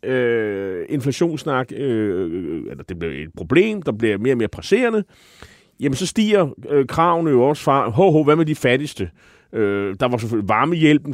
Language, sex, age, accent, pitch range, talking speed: Danish, male, 30-49, native, 110-155 Hz, 180 wpm